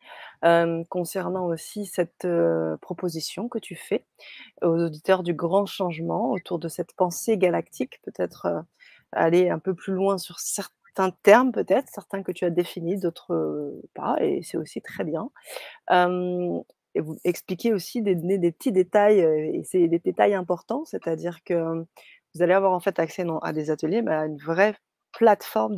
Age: 30-49